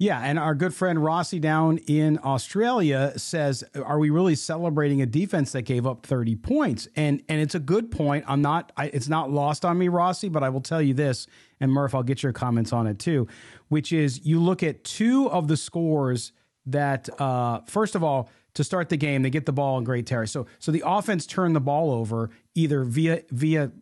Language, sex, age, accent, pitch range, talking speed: English, male, 40-59, American, 130-160 Hz, 220 wpm